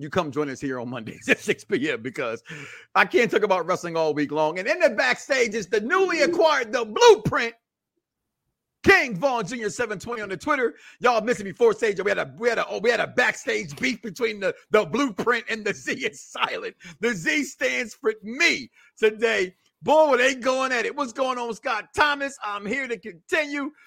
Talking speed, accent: 215 wpm, American